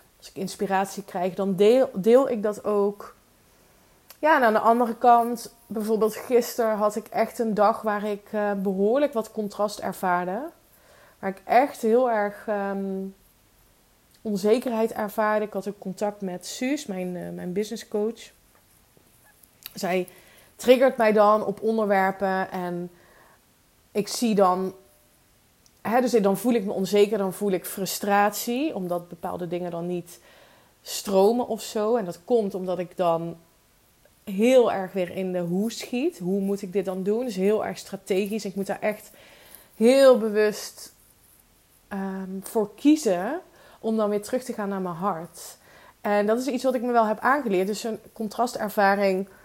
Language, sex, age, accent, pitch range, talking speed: Dutch, female, 20-39, Dutch, 195-230 Hz, 160 wpm